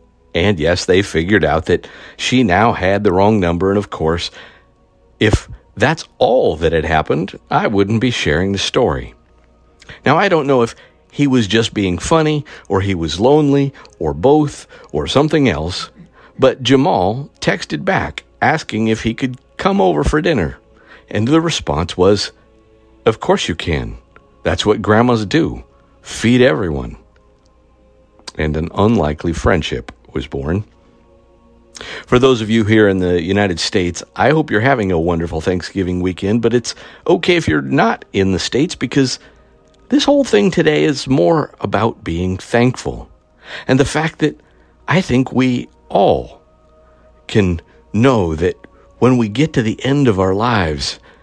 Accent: American